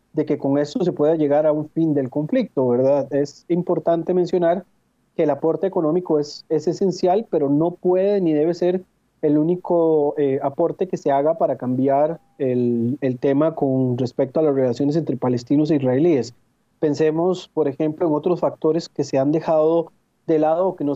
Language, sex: Spanish, male